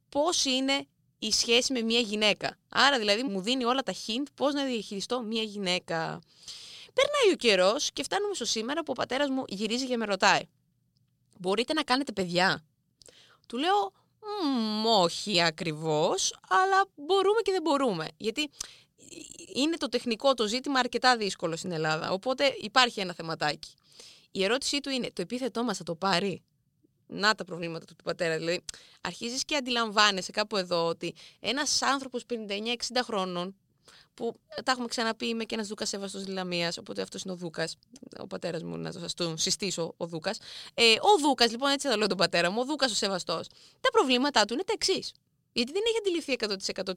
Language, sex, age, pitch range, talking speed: Greek, female, 20-39, 185-270 Hz, 175 wpm